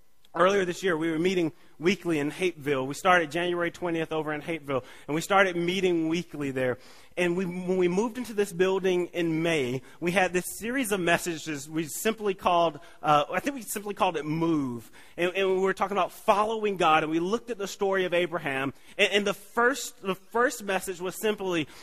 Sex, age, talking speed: male, 30-49, 205 wpm